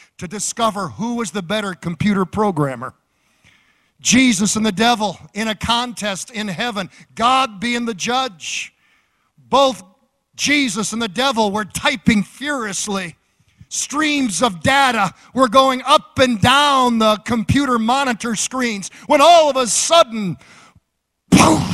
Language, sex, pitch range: English, male, 200-275 Hz